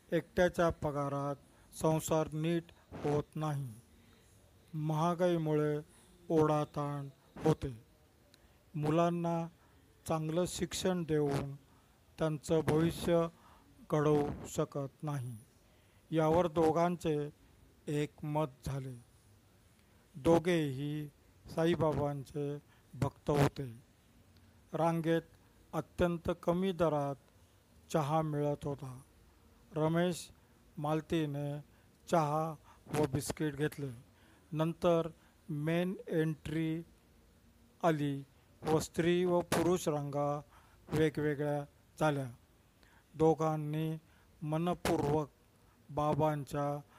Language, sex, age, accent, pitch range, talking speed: Marathi, male, 50-69, native, 125-160 Hz, 65 wpm